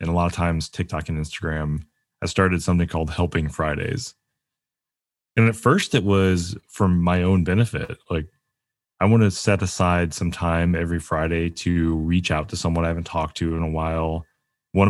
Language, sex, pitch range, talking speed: English, male, 80-95 Hz, 185 wpm